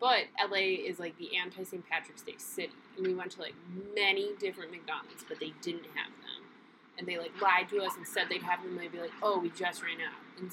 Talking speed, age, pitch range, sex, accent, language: 245 wpm, 20-39, 180-285 Hz, female, American, English